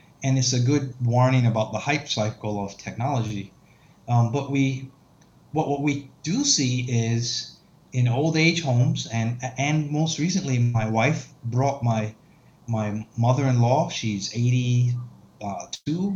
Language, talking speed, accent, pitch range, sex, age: English, 140 wpm, American, 120-150 Hz, male, 30-49